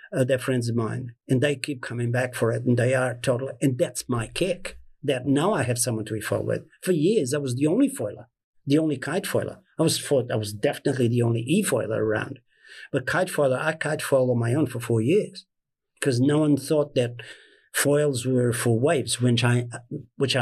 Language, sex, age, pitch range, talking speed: English, male, 50-69, 120-145 Hz, 215 wpm